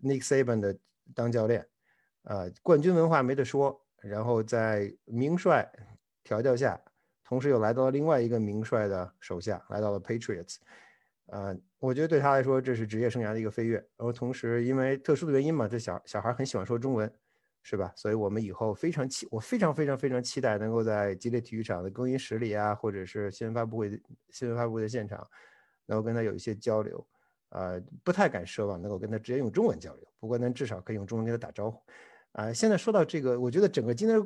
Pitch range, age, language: 105-135 Hz, 50-69, Chinese